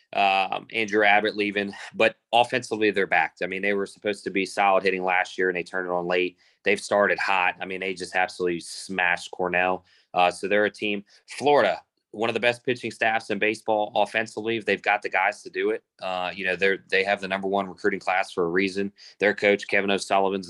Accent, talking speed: American, 220 wpm